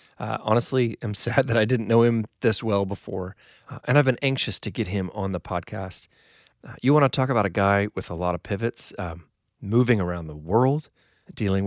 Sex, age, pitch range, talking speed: male, 30-49, 95-120 Hz, 215 wpm